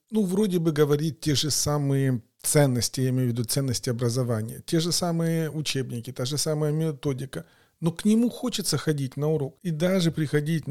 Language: Russian